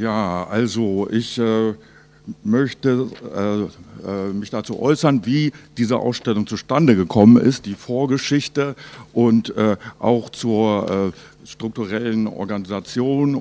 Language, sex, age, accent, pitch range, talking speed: German, male, 60-79, German, 110-130 Hz, 110 wpm